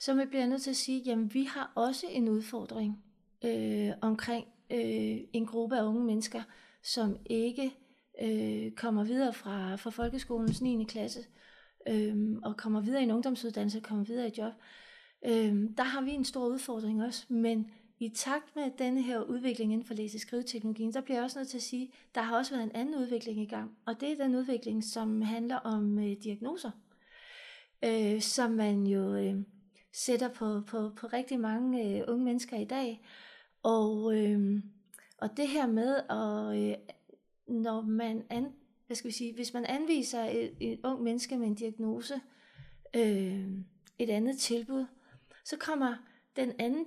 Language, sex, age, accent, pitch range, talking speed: Danish, female, 30-49, native, 215-260 Hz, 175 wpm